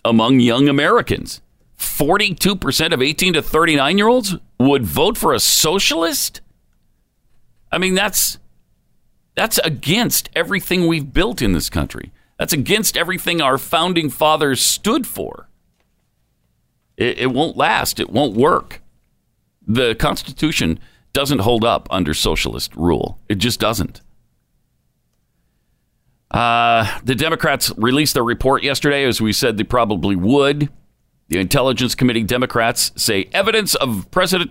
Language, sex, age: English, male, 50-69